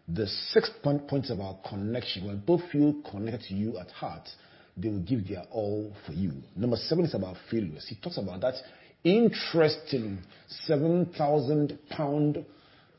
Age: 40-59